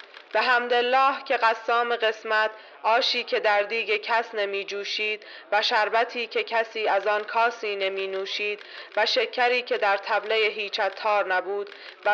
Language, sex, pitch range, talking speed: Persian, female, 195-225 Hz, 135 wpm